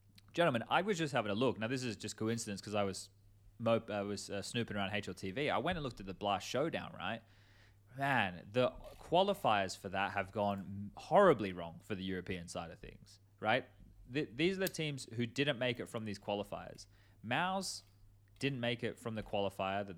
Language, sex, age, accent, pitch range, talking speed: English, male, 20-39, Australian, 100-120 Hz, 200 wpm